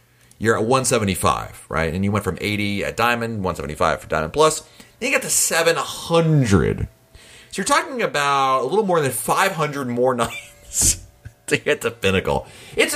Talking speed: 165 wpm